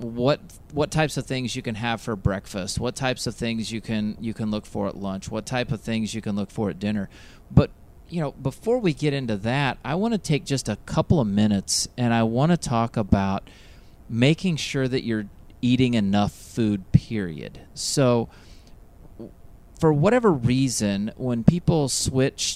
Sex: male